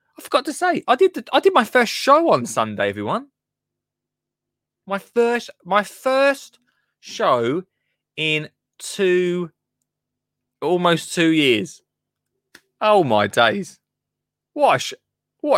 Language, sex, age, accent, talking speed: English, male, 20-39, British, 105 wpm